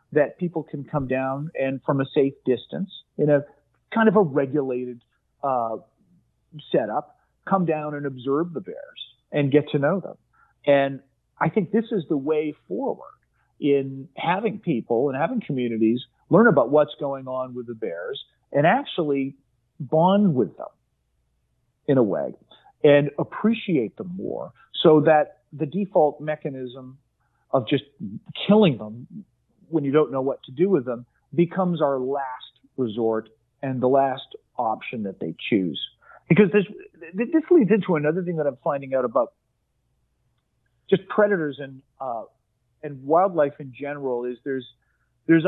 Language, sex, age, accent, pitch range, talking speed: English, male, 40-59, American, 130-170 Hz, 150 wpm